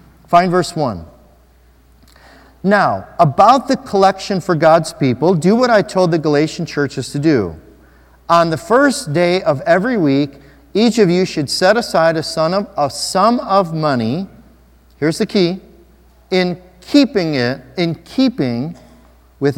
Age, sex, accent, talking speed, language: 40-59, male, American, 130 wpm, English